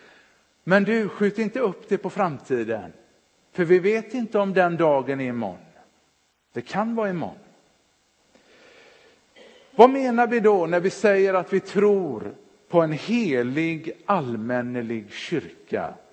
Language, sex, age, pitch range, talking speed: Swedish, male, 50-69, 160-230 Hz, 135 wpm